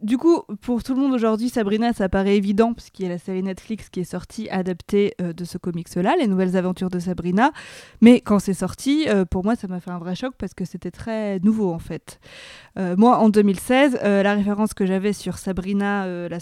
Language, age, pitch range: French, 20-39, 180-215 Hz